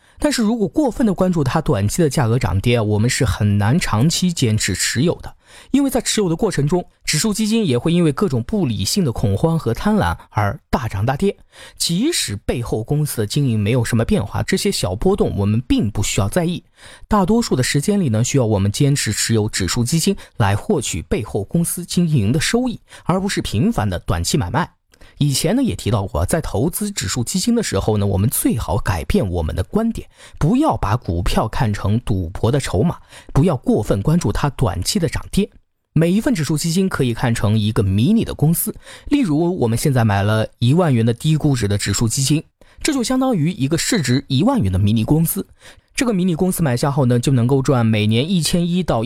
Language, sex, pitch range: Chinese, male, 110-180 Hz